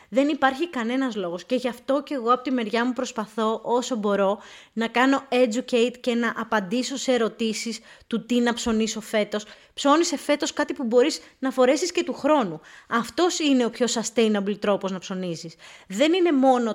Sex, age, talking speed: female, 20-39, 180 wpm